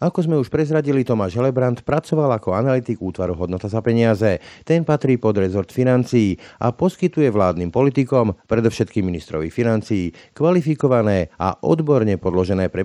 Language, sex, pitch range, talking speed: Slovak, male, 95-130 Hz, 140 wpm